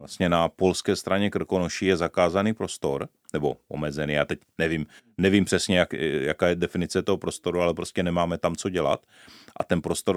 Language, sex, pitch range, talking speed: Czech, male, 80-90 Hz, 175 wpm